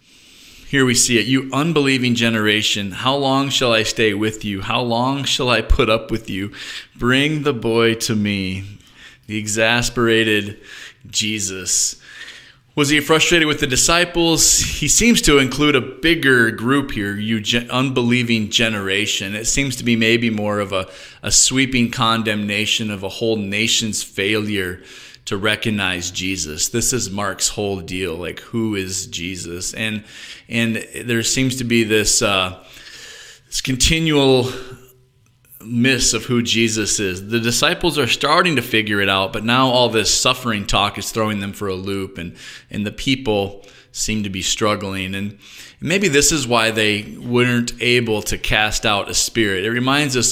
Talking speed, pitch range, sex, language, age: 160 wpm, 105-125 Hz, male, English, 20-39